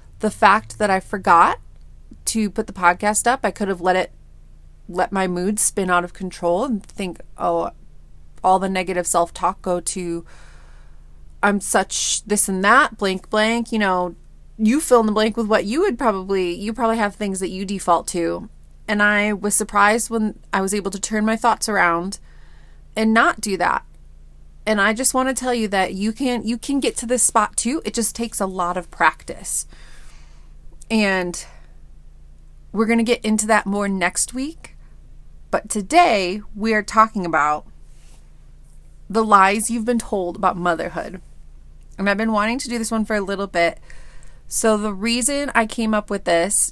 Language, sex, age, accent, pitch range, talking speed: English, female, 30-49, American, 185-225 Hz, 180 wpm